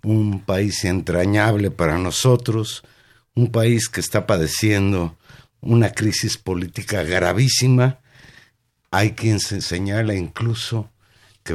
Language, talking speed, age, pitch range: Spanish, 100 wpm, 50-69, 100-125 Hz